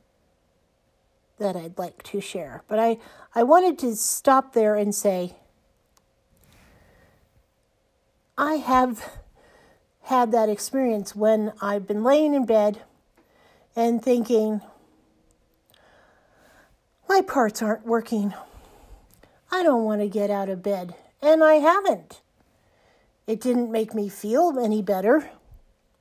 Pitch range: 210-265 Hz